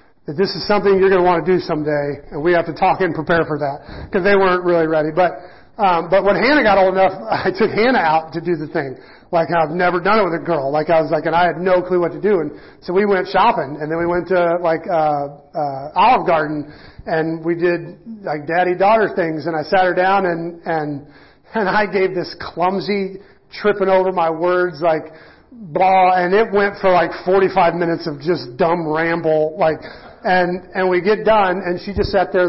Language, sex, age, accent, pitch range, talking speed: English, male, 40-59, American, 160-195 Hz, 225 wpm